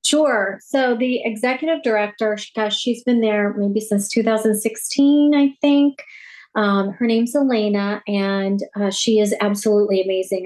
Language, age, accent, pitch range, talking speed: English, 40-59, American, 205-275 Hz, 130 wpm